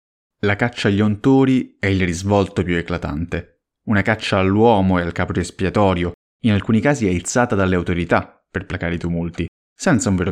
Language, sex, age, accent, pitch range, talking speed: Italian, male, 30-49, native, 85-105 Hz, 170 wpm